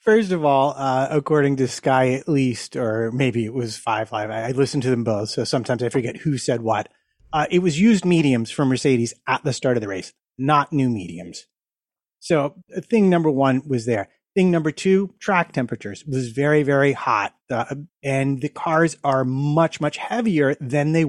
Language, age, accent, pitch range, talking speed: English, 30-49, American, 130-175 Hz, 195 wpm